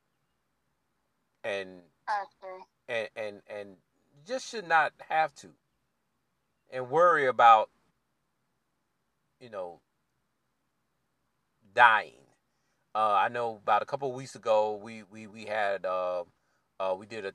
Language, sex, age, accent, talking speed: English, male, 40-59, American, 115 wpm